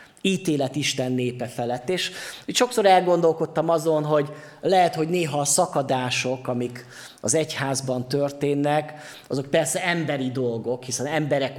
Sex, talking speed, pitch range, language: male, 125 wpm, 130-160 Hz, Hungarian